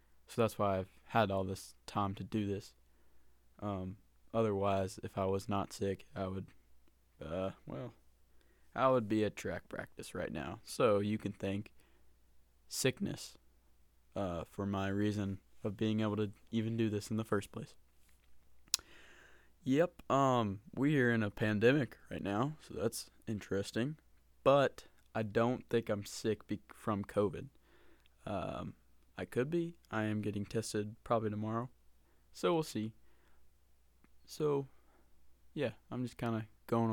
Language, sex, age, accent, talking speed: English, male, 20-39, American, 150 wpm